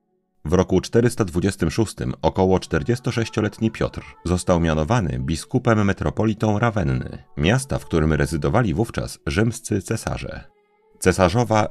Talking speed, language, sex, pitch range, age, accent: 95 wpm, Polish, male, 80-115 Hz, 40-59, native